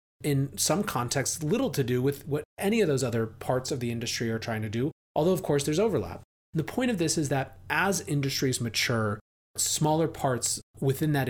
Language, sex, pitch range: English, male, 115-145 Hz